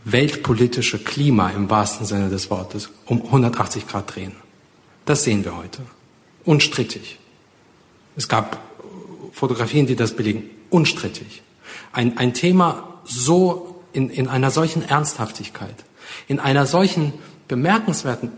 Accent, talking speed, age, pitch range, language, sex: German, 120 wpm, 40-59, 110-155 Hz, German, male